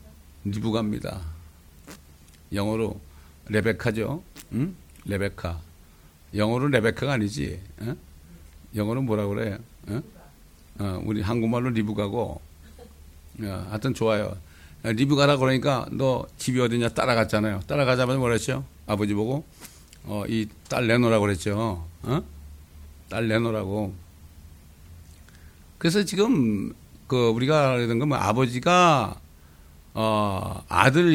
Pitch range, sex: 85-130 Hz, male